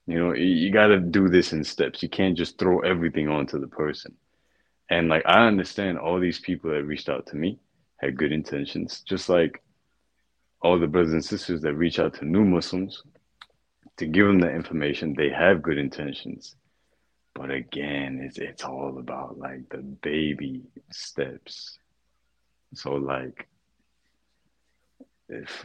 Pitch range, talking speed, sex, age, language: 75-90 Hz, 155 wpm, male, 30-49, English